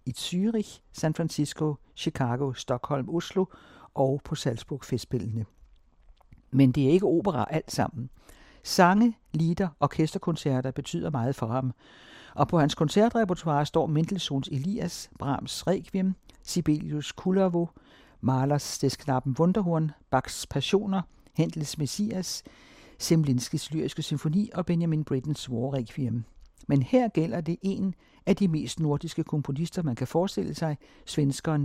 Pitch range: 130-170 Hz